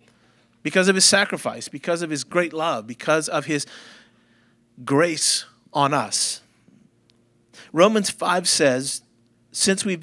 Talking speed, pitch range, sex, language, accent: 120 wpm, 125-185 Hz, male, English, American